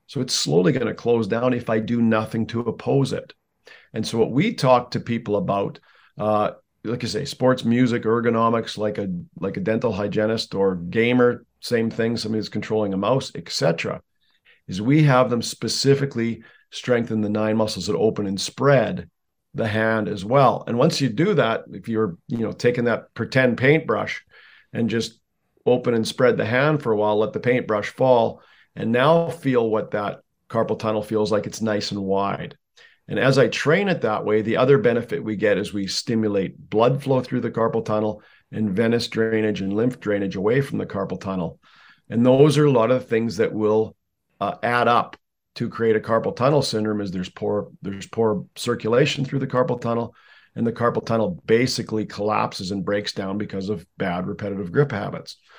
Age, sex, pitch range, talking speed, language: 50-69, male, 105-125 Hz, 190 wpm, English